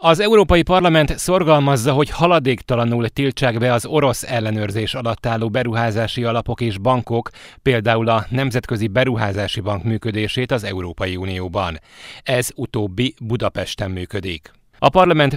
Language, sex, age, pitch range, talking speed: Hungarian, male, 30-49, 105-130 Hz, 125 wpm